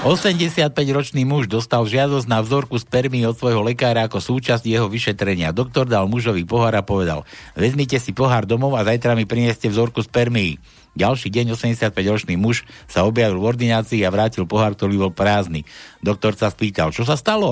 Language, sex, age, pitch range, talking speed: Slovak, male, 60-79, 115-165 Hz, 175 wpm